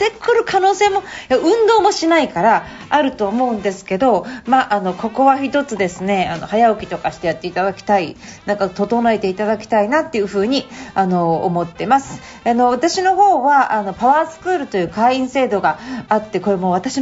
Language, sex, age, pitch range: Japanese, female, 40-59, 205-280 Hz